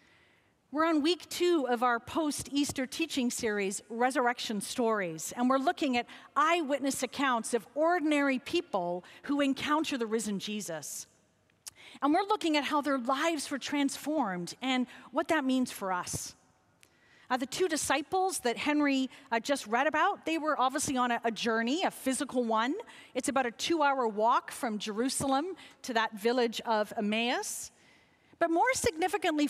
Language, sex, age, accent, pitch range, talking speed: English, female, 40-59, American, 240-325 Hz, 155 wpm